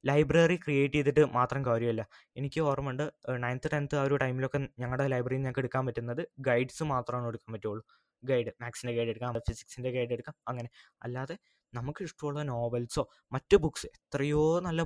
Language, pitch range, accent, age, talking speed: Malayalam, 125-150 Hz, native, 20-39, 140 wpm